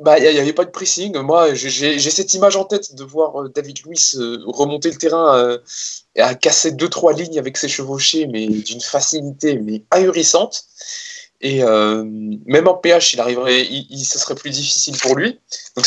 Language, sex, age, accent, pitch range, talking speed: French, male, 20-39, French, 130-170 Hz, 195 wpm